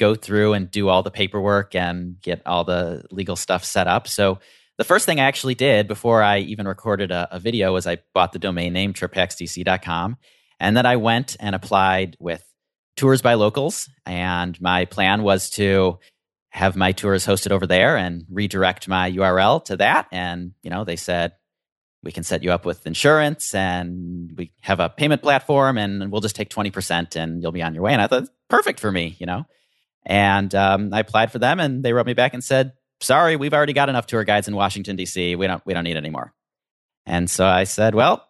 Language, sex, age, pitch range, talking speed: English, male, 30-49, 95-110 Hz, 210 wpm